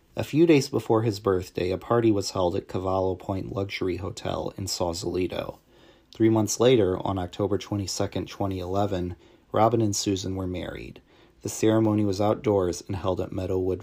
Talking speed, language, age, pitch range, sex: 160 wpm, English, 30-49, 95-110 Hz, male